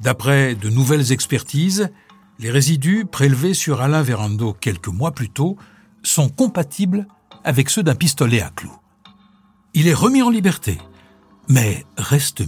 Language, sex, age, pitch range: French, male, 60-79, 100-150 Hz